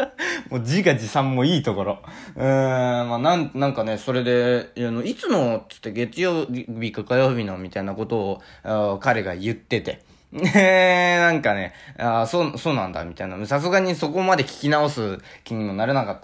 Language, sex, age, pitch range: Japanese, male, 20-39, 115-160 Hz